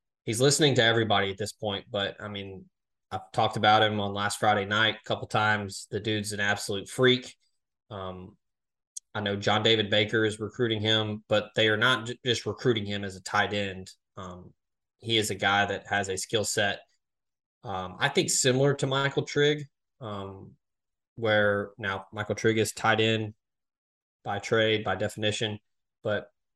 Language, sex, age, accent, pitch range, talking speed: English, male, 20-39, American, 100-110 Hz, 175 wpm